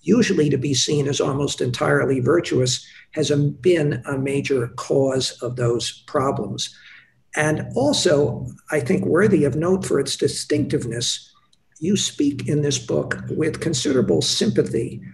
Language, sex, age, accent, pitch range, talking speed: English, male, 60-79, American, 130-155 Hz, 135 wpm